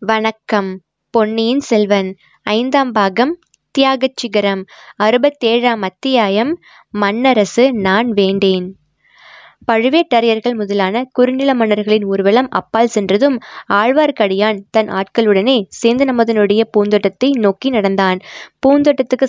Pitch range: 205-245 Hz